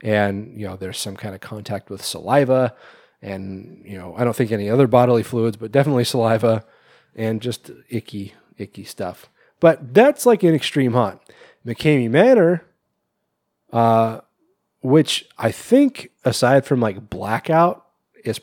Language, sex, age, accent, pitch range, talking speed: English, male, 30-49, American, 110-135 Hz, 145 wpm